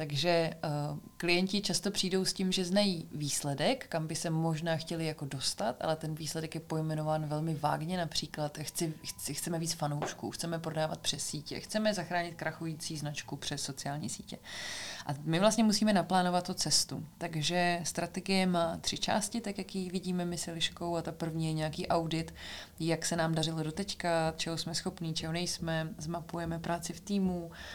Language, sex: Czech, female